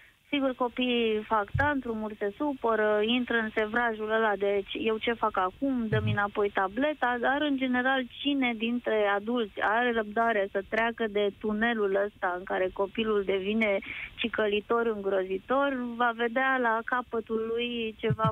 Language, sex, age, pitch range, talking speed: Romanian, female, 20-39, 195-235 Hz, 145 wpm